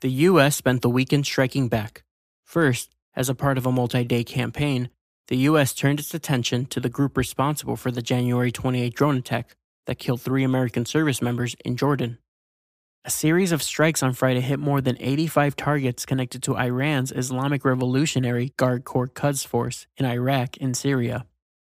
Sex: male